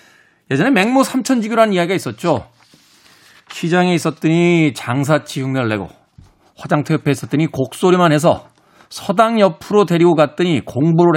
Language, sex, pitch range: Korean, male, 130-185 Hz